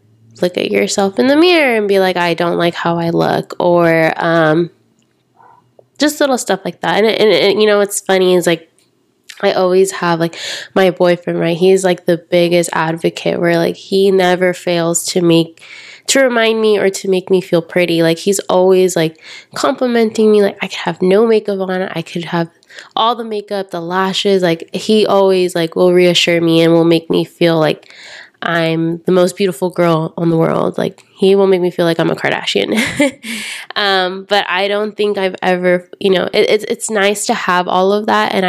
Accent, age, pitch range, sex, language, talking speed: American, 20-39, 170-195 Hz, female, English, 205 wpm